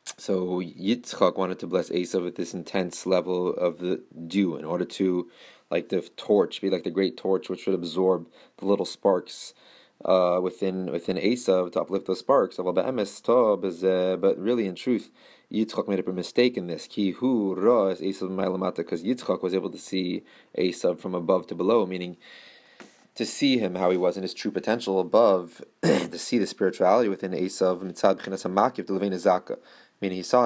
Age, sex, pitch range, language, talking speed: 20-39, male, 90-95 Hz, English, 160 wpm